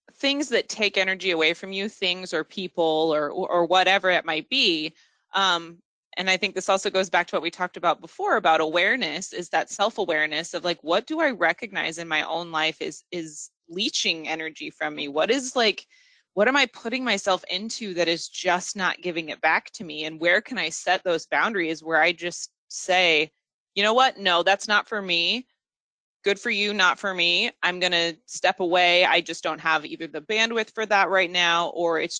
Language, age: English, 20-39